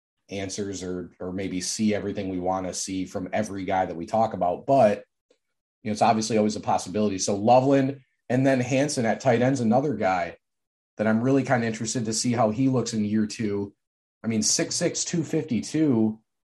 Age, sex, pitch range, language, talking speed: 30-49, male, 105-125 Hz, English, 195 wpm